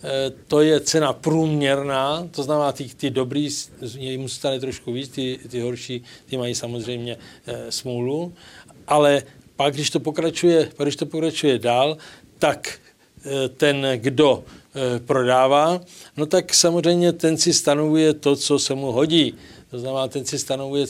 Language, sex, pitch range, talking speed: Czech, male, 130-150 Hz, 135 wpm